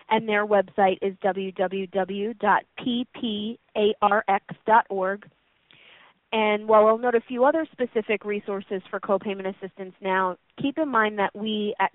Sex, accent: female, American